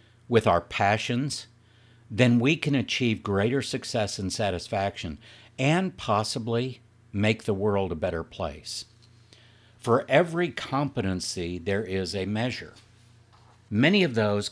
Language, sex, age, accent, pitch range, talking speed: English, male, 60-79, American, 105-120 Hz, 120 wpm